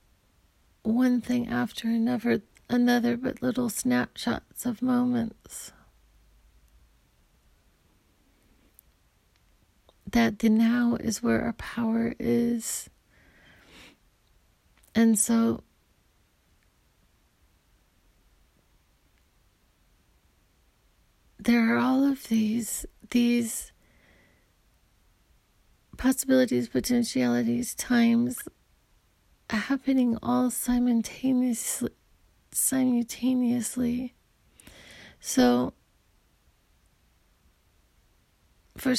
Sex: female